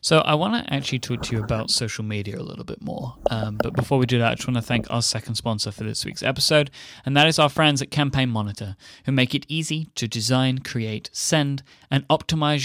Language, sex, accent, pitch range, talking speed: English, male, British, 115-150 Hz, 240 wpm